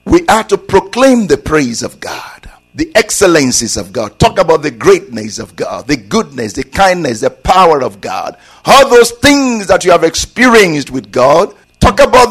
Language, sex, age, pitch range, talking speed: English, male, 50-69, 165-240 Hz, 180 wpm